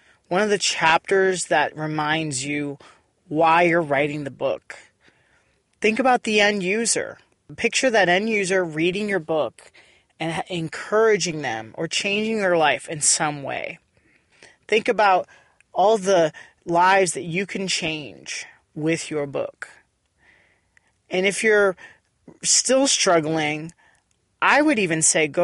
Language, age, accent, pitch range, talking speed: English, 30-49, American, 150-195 Hz, 130 wpm